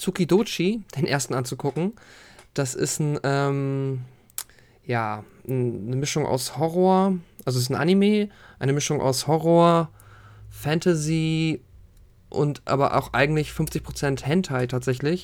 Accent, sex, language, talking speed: German, male, German, 115 wpm